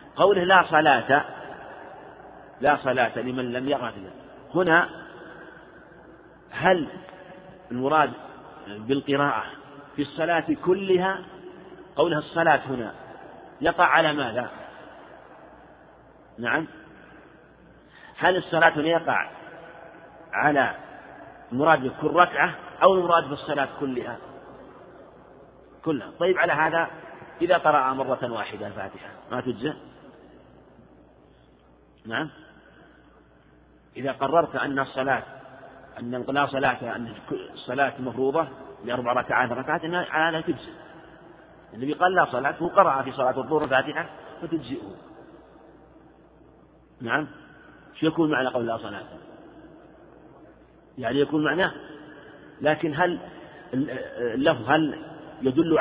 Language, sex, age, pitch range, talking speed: Arabic, male, 50-69, 130-165 Hz, 95 wpm